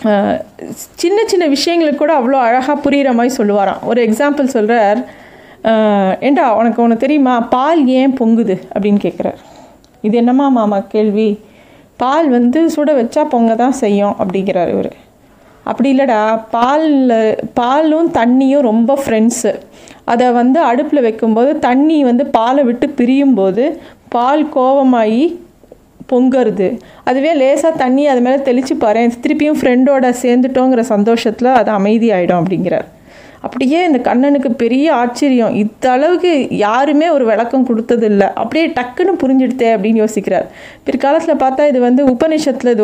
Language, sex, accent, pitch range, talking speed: Tamil, female, native, 220-280 Hz, 120 wpm